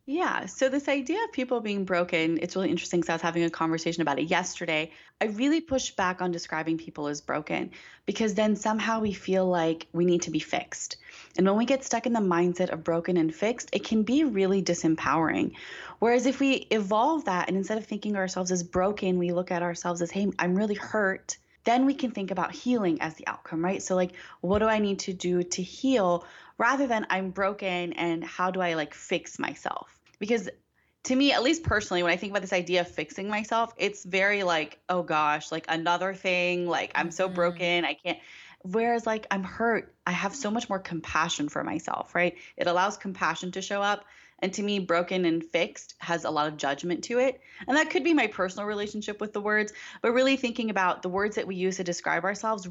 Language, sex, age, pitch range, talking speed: English, female, 20-39, 175-215 Hz, 220 wpm